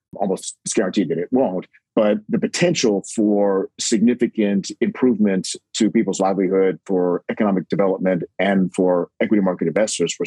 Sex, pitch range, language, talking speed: male, 95-110 Hz, English, 140 wpm